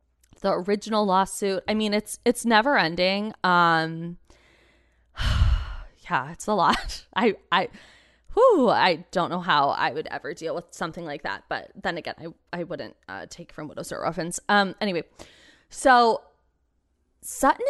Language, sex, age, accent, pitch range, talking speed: English, female, 20-39, American, 175-230 Hz, 155 wpm